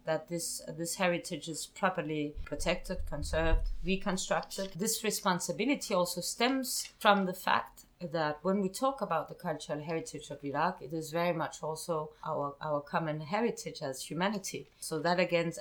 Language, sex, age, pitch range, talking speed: English, female, 30-49, 155-195 Hz, 155 wpm